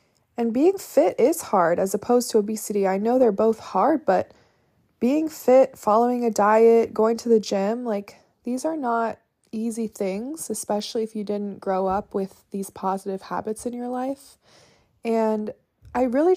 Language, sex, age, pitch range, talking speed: English, female, 20-39, 200-230 Hz, 170 wpm